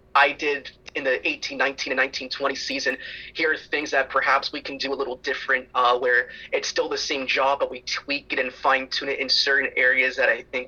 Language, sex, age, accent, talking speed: English, male, 20-39, American, 225 wpm